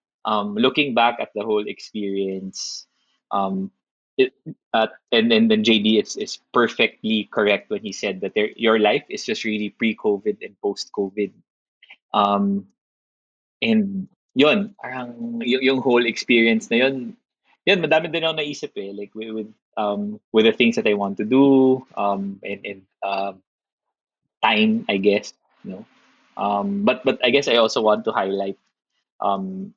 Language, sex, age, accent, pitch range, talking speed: Filipino, male, 20-39, native, 100-135 Hz, 155 wpm